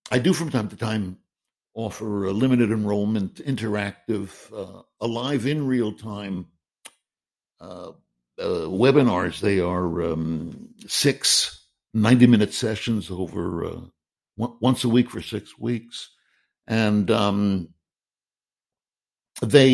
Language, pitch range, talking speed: English, 95-125 Hz, 115 wpm